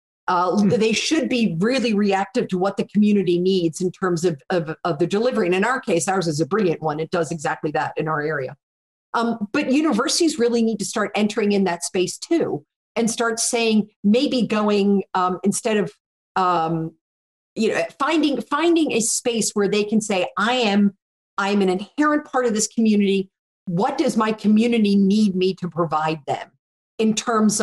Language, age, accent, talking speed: English, 50-69, American, 185 wpm